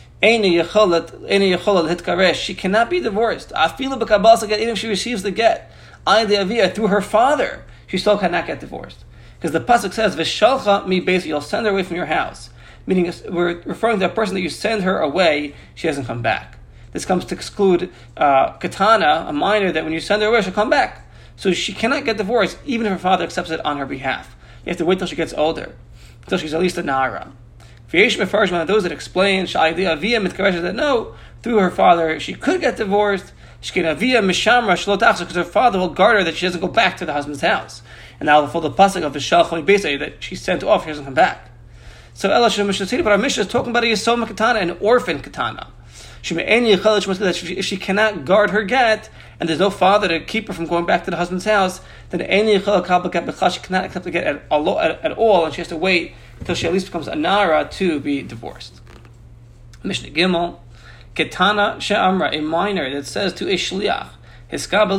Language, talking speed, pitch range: English, 200 wpm, 165-210 Hz